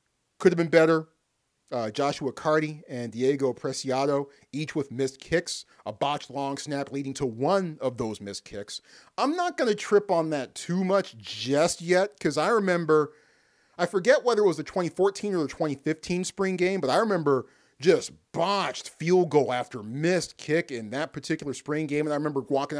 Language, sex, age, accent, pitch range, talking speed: English, male, 40-59, American, 140-210 Hz, 185 wpm